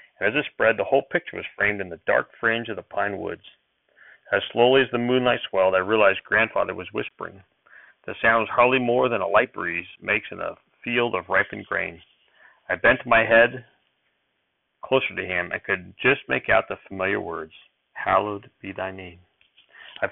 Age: 40-59